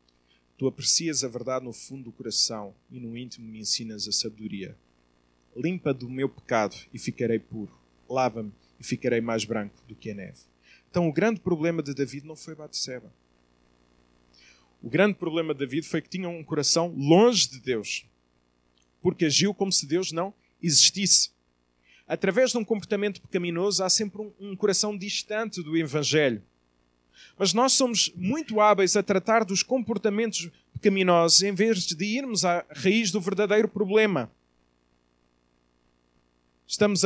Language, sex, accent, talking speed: Portuguese, male, Brazilian, 150 wpm